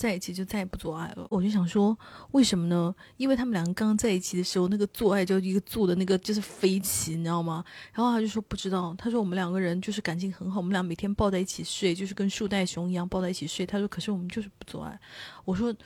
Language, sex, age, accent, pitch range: Chinese, female, 20-39, native, 175-220 Hz